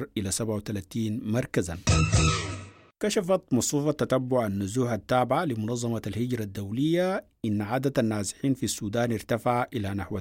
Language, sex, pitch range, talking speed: English, male, 105-125 Hz, 110 wpm